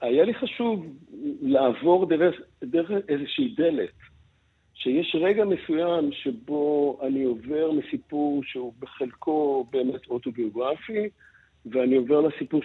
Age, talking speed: 60-79, 105 wpm